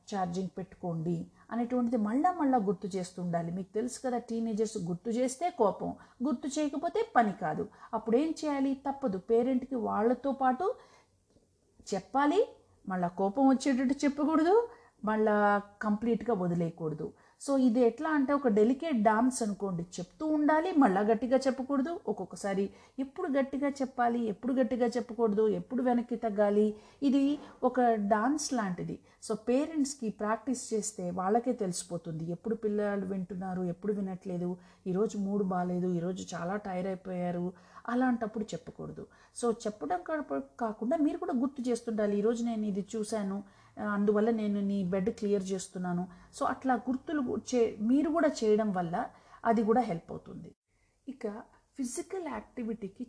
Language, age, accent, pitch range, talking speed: Telugu, 50-69, native, 190-255 Hz, 130 wpm